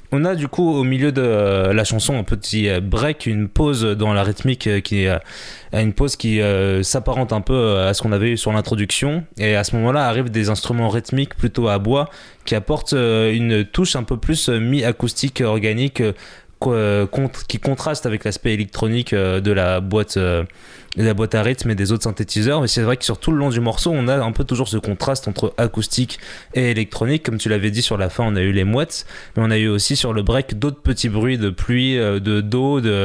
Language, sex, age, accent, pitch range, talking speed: French, male, 20-39, French, 105-125 Hz, 205 wpm